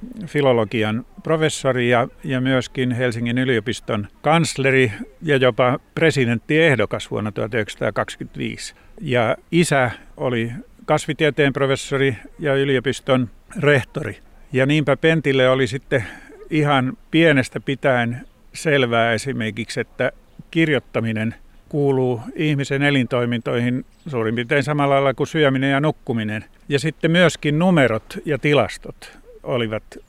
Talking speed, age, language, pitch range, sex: 100 wpm, 50-69, Finnish, 120-150 Hz, male